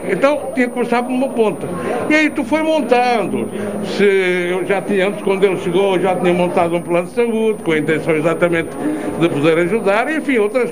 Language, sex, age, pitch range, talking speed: Portuguese, male, 60-79, 190-240 Hz, 215 wpm